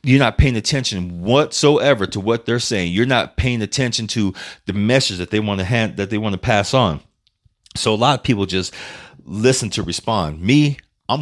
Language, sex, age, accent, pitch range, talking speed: English, male, 30-49, American, 90-115 Hz, 205 wpm